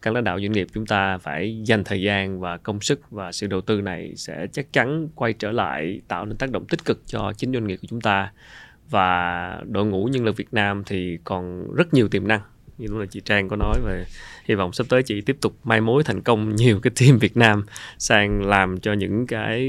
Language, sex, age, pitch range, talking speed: Vietnamese, male, 20-39, 100-120 Hz, 245 wpm